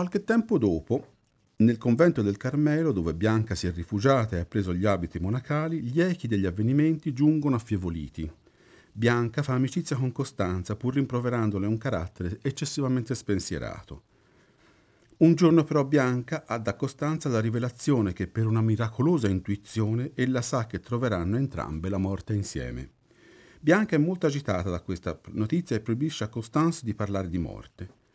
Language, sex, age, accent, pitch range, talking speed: Italian, male, 50-69, native, 105-150 Hz, 155 wpm